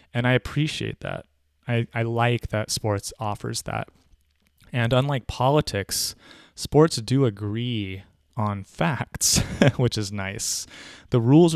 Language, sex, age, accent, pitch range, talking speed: English, male, 20-39, American, 100-120 Hz, 125 wpm